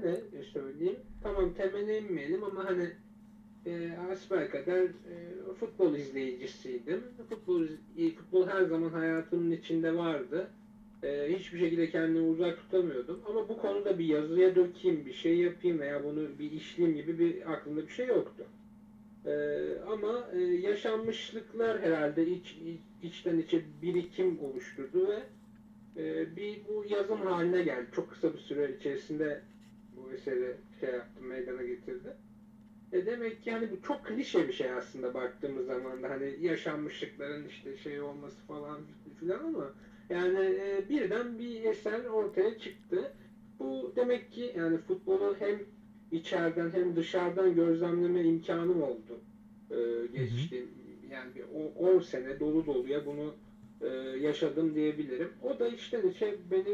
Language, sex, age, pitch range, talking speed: Turkish, male, 50-69, 160-215 Hz, 135 wpm